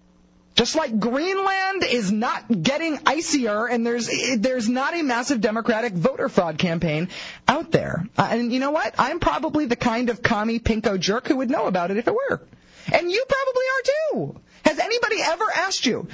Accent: American